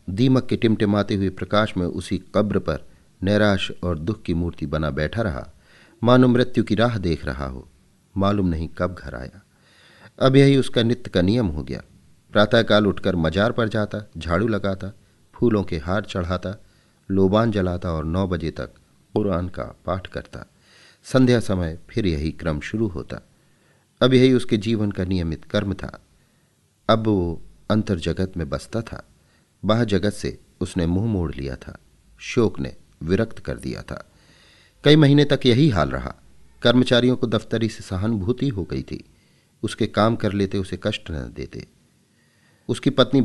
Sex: male